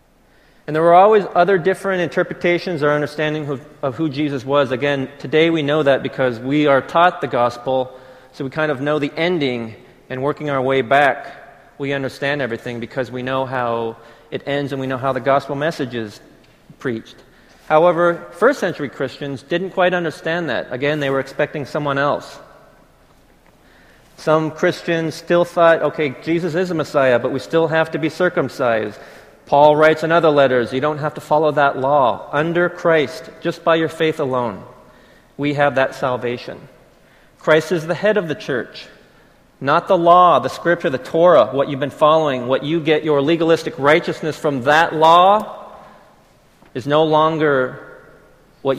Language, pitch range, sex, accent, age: Korean, 135-165 Hz, male, American, 40-59